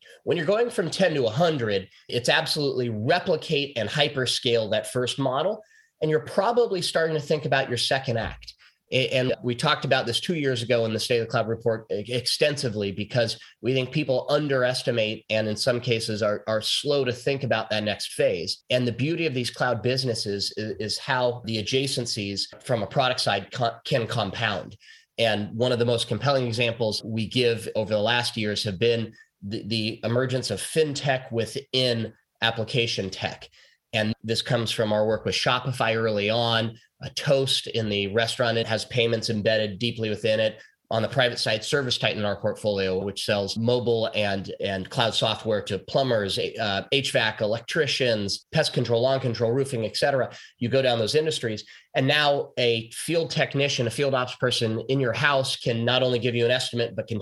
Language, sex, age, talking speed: English, male, 30-49, 185 wpm